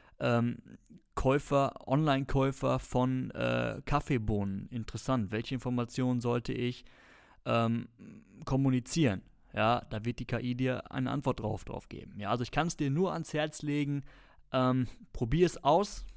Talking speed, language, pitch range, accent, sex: 135 wpm, German, 115-135 Hz, German, male